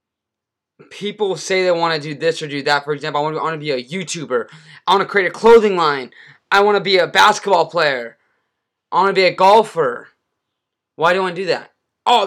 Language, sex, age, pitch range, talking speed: English, male, 20-39, 150-185 Hz, 245 wpm